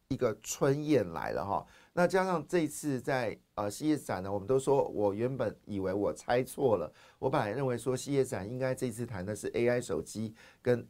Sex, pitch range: male, 110-140 Hz